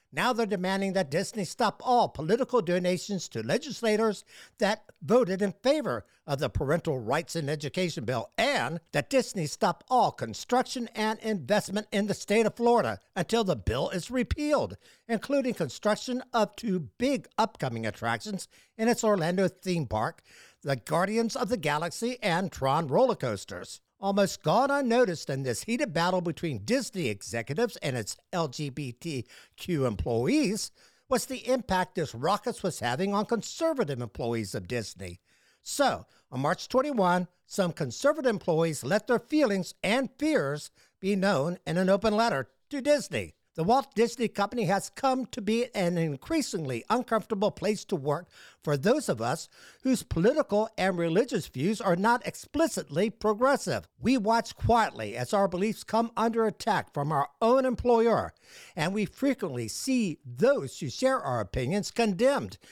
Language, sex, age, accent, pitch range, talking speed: English, male, 60-79, American, 165-230 Hz, 150 wpm